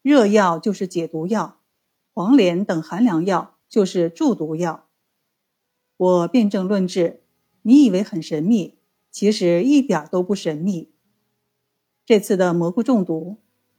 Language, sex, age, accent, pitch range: Chinese, female, 50-69, native, 170-235 Hz